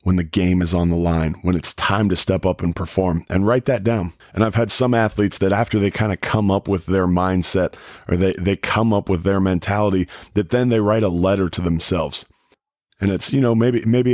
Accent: American